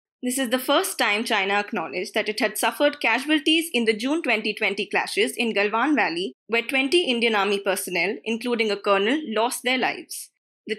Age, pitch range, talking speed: 20-39, 210-290 Hz, 180 wpm